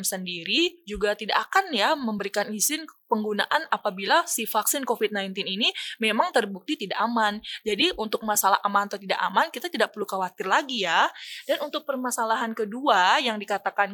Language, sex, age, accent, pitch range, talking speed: Indonesian, female, 20-39, native, 200-250 Hz, 155 wpm